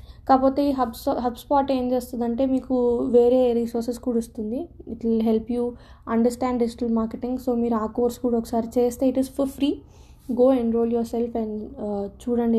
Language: Telugu